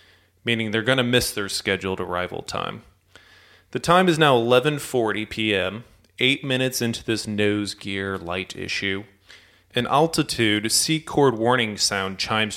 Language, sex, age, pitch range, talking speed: English, male, 30-49, 100-130 Hz, 140 wpm